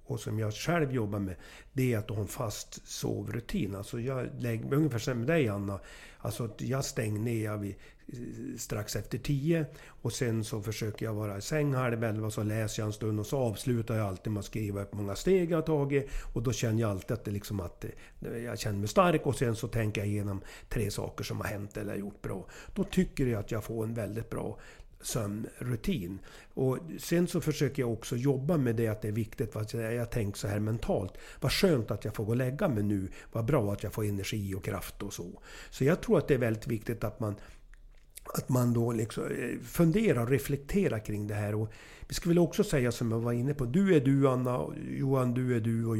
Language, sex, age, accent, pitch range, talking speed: English, male, 60-79, Swedish, 105-135 Hz, 220 wpm